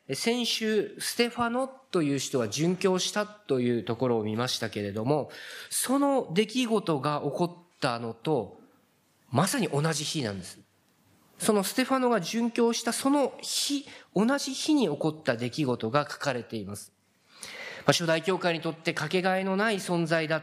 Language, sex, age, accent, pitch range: Japanese, male, 40-59, native, 135-220 Hz